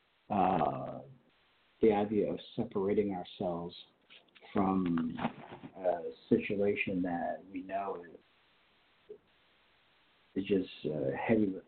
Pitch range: 100-125 Hz